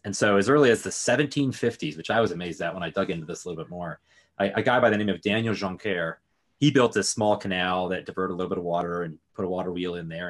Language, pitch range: English, 95-115 Hz